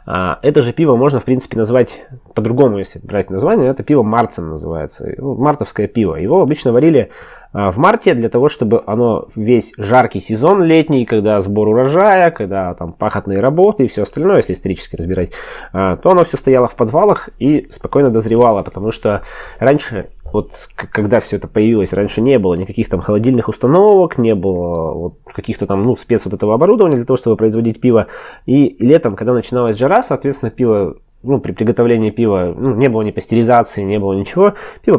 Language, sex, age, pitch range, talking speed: Russian, male, 20-39, 105-135 Hz, 175 wpm